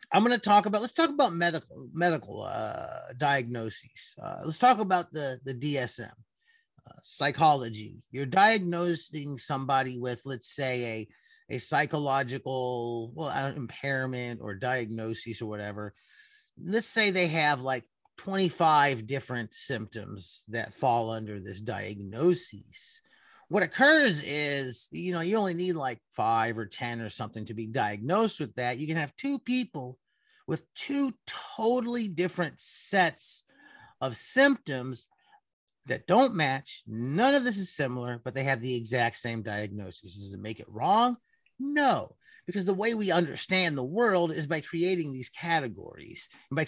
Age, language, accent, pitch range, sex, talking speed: 30-49, English, American, 120-195 Hz, male, 150 wpm